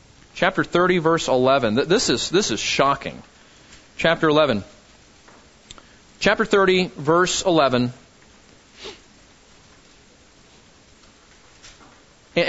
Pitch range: 140-185 Hz